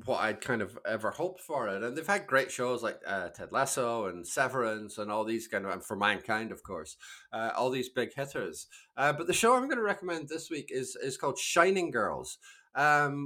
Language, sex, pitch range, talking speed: English, male, 110-170 Hz, 225 wpm